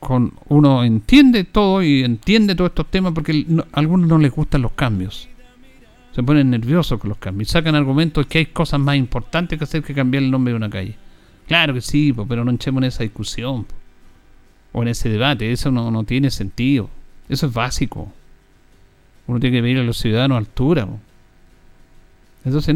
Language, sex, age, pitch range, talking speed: Spanish, male, 50-69, 120-185 Hz, 190 wpm